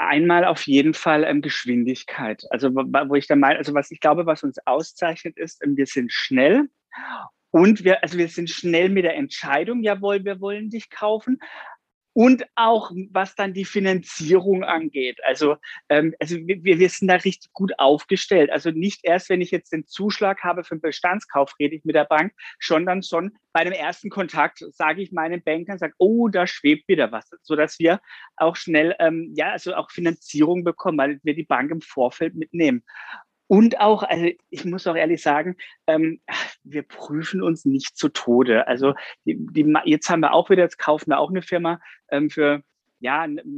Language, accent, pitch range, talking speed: German, German, 150-195 Hz, 180 wpm